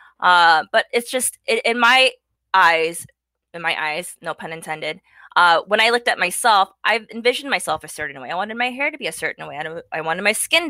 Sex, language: female, English